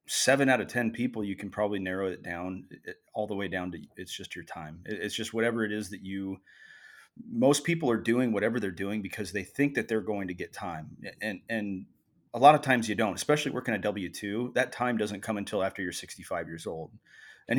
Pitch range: 95-120 Hz